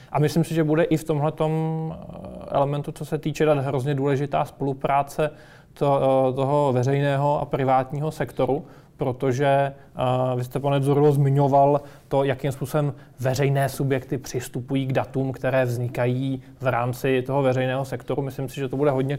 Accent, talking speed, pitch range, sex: native, 150 wpm, 130-150 Hz, male